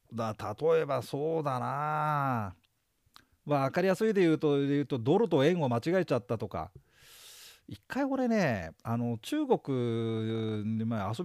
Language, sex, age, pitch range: Japanese, male, 40-59, 110-185 Hz